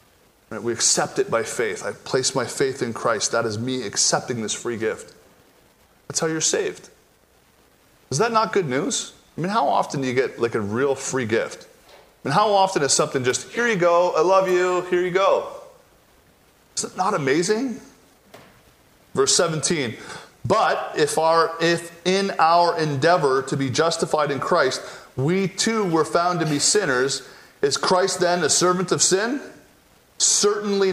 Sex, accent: male, American